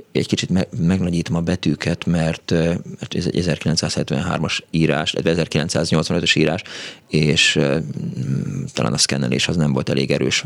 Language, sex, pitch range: Hungarian, male, 90-115 Hz